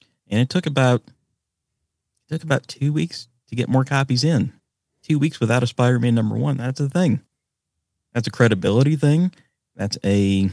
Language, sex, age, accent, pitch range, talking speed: English, male, 30-49, American, 100-125 Hz, 170 wpm